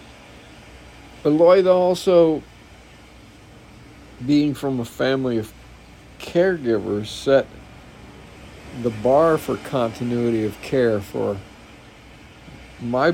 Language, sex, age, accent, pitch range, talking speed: English, male, 60-79, American, 120-145 Hz, 80 wpm